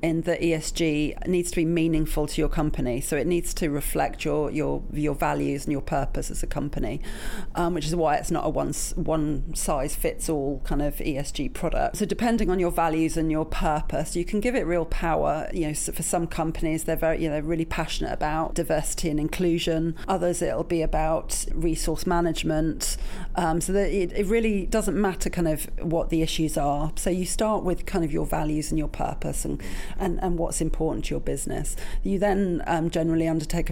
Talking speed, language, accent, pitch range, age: 205 wpm, English, British, 155-175 Hz, 40-59